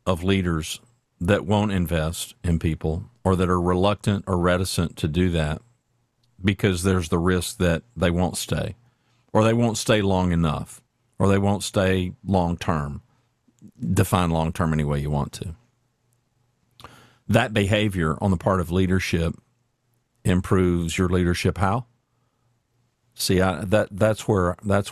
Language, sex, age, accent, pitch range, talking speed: English, male, 50-69, American, 90-120 Hz, 140 wpm